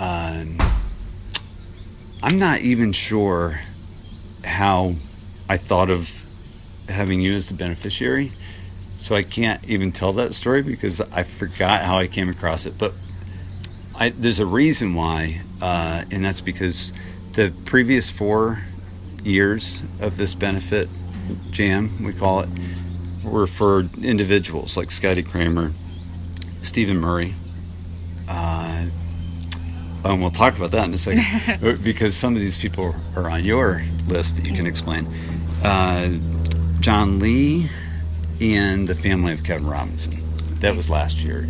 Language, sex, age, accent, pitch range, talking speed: English, male, 50-69, American, 80-100 Hz, 135 wpm